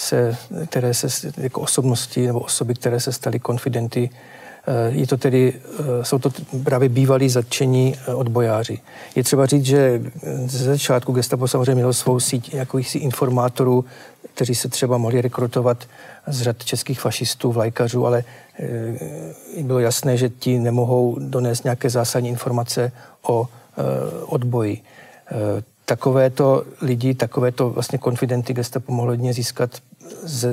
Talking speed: 125 wpm